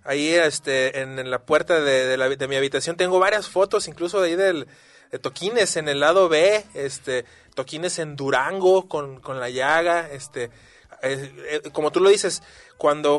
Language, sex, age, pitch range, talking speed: Spanish, male, 30-49, 135-175 Hz, 185 wpm